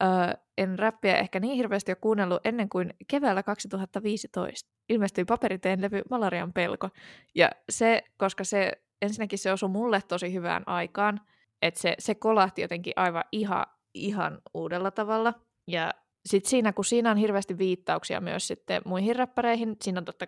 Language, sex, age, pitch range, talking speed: Finnish, female, 20-39, 180-205 Hz, 155 wpm